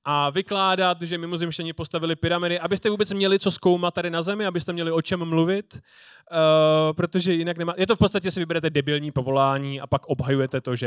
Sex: male